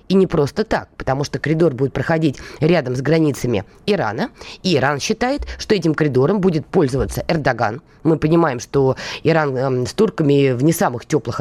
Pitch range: 140-190 Hz